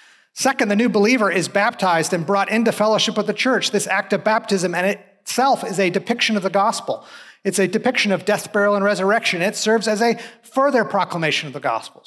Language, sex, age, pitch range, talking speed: English, male, 30-49, 185-220 Hz, 210 wpm